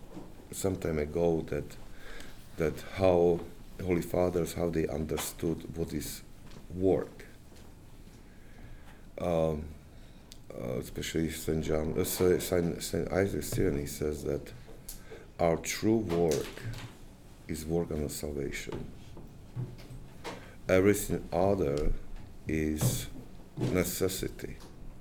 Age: 50-69